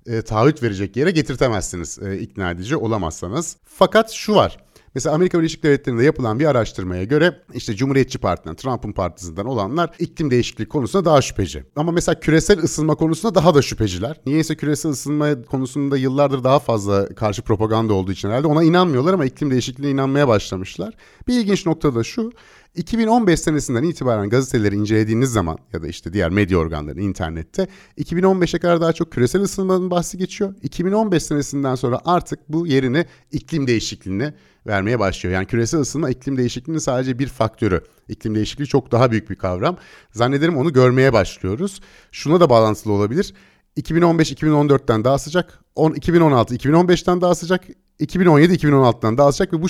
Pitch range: 110-165 Hz